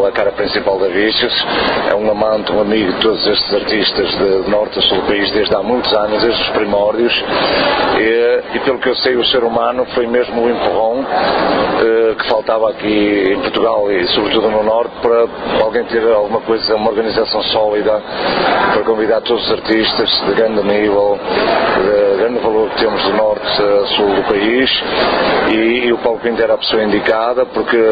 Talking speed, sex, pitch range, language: 180 wpm, male, 105-115 Hz, Portuguese